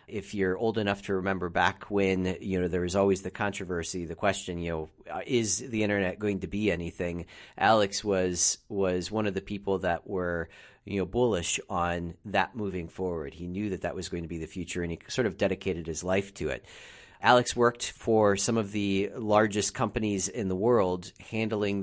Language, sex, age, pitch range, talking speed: English, male, 40-59, 95-110 Hz, 200 wpm